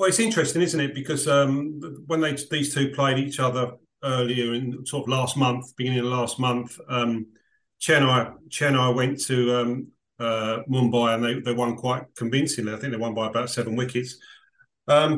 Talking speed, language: 185 wpm, English